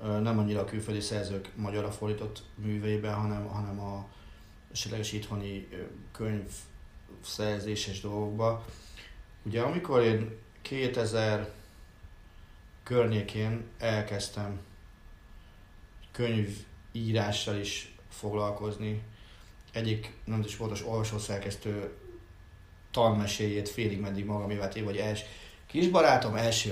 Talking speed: 90 wpm